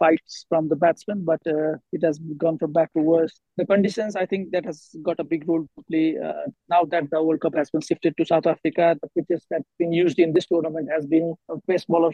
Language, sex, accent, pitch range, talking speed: English, male, Indian, 165-180 Hz, 240 wpm